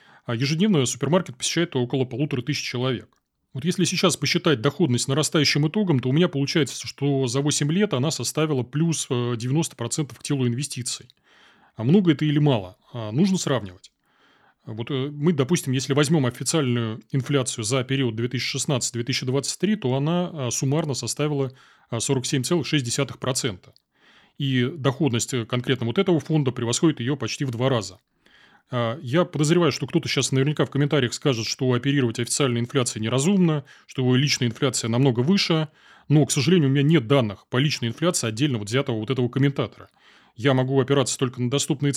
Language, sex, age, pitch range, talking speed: Russian, male, 30-49, 120-150 Hz, 150 wpm